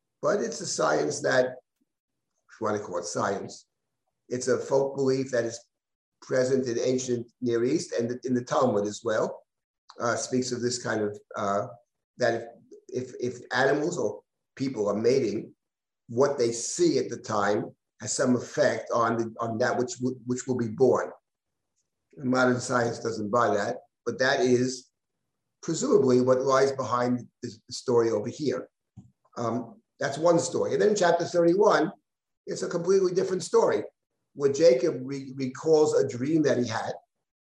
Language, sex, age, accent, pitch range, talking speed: English, male, 50-69, American, 120-140 Hz, 165 wpm